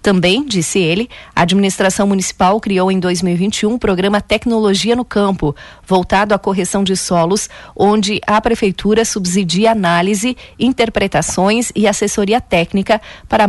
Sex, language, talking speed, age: female, Portuguese, 135 wpm, 40-59